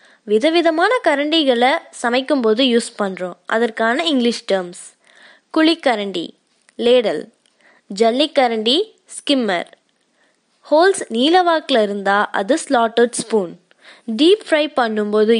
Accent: native